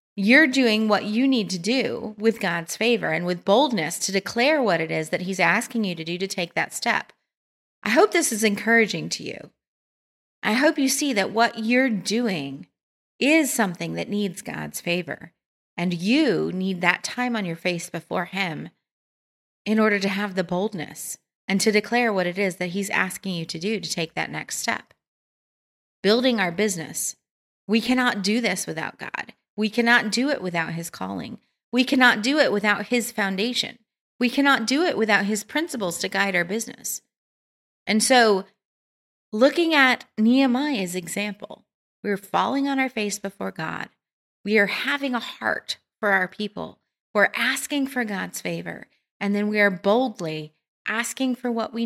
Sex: female